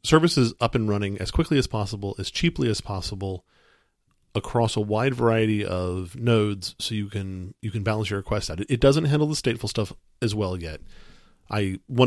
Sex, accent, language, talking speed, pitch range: male, American, English, 195 wpm, 95-110 Hz